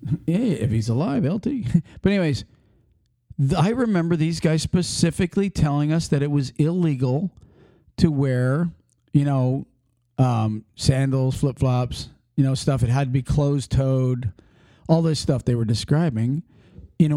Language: English